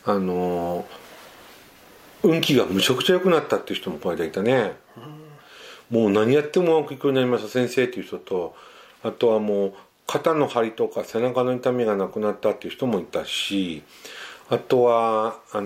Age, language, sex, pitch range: 50-69, Japanese, male, 100-135 Hz